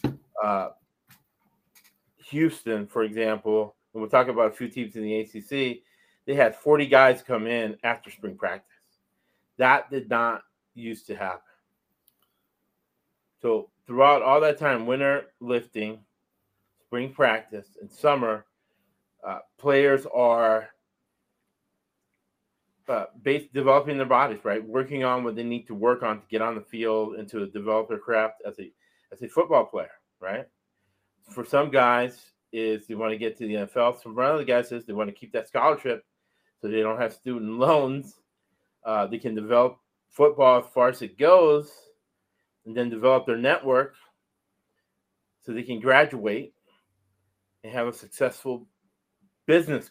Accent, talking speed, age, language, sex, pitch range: American, 150 wpm, 30-49, English, male, 110-140 Hz